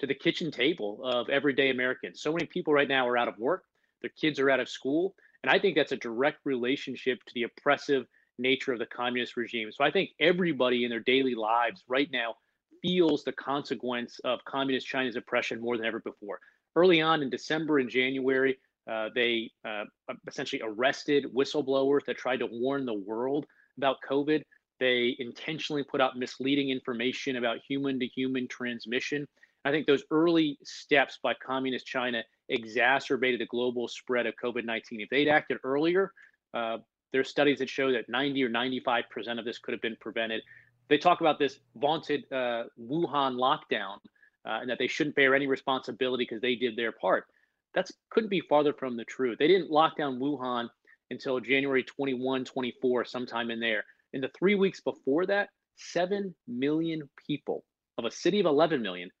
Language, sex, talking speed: English, male, 180 wpm